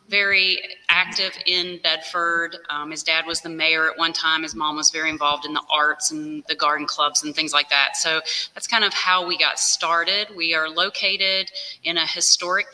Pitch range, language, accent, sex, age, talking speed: 155-180 Hz, English, American, female, 30-49, 205 wpm